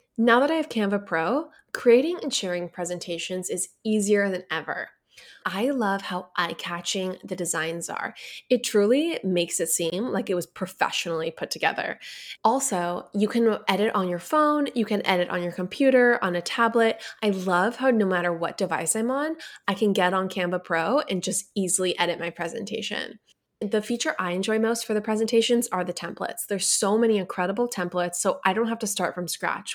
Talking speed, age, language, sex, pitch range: 190 wpm, 10-29, English, female, 175-225 Hz